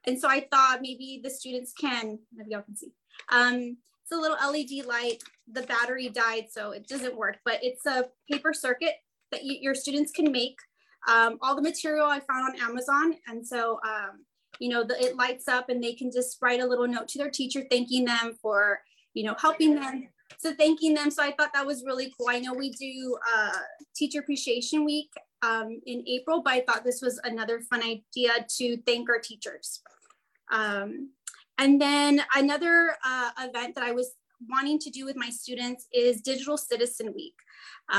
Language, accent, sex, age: English, American, female, 20-39